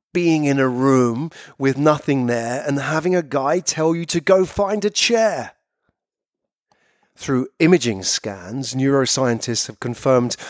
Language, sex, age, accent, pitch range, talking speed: English, male, 40-59, British, 120-160 Hz, 135 wpm